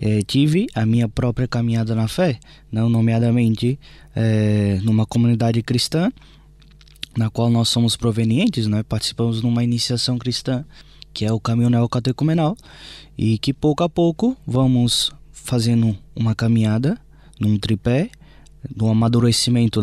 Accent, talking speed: Brazilian, 125 wpm